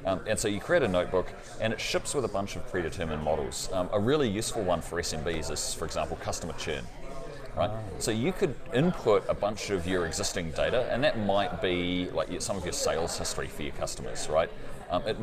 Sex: male